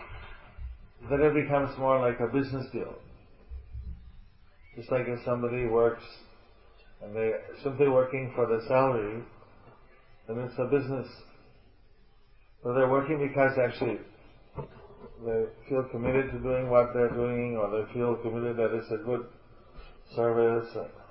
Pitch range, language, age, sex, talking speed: 115-130 Hz, English, 40-59, male, 135 wpm